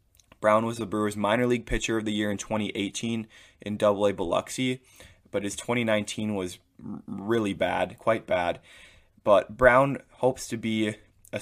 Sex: male